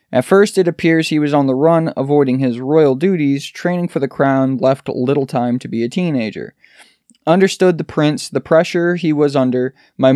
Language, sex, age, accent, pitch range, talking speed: English, male, 20-39, American, 125-160 Hz, 195 wpm